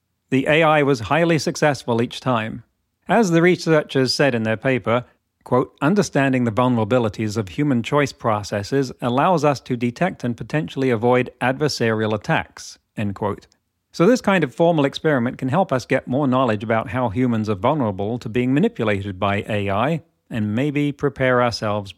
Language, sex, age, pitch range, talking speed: English, male, 40-59, 110-150 Hz, 160 wpm